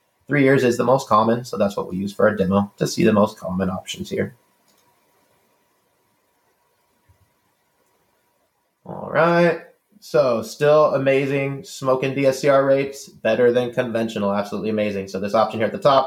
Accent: American